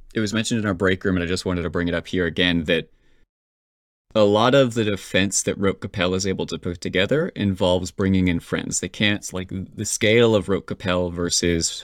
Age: 30-49